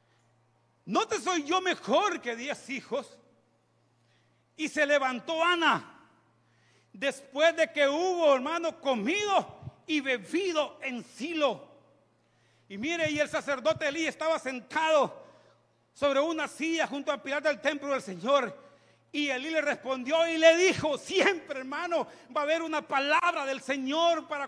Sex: male